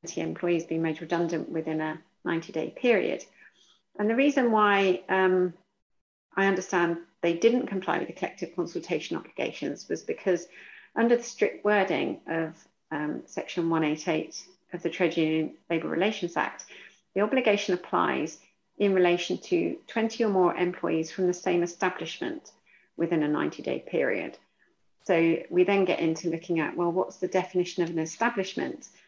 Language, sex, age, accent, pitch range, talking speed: English, female, 40-59, British, 165-195 Hz, 155 wpm